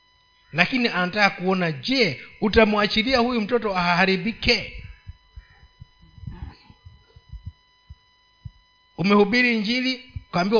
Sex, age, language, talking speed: male, 50-69, Swahili, 60 wpm